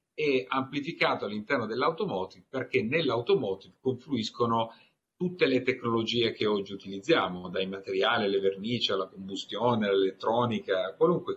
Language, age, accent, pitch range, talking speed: Italian, 50-69, native, 115-180 Hz, 105 wpm